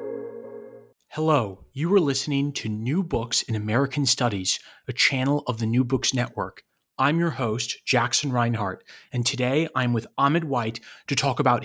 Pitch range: 120-155 Hz